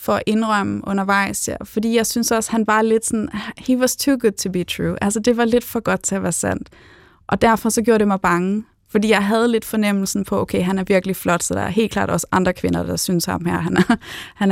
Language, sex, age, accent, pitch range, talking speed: Danish, female, 20-39, native, 190-220 Hz, 250 wpm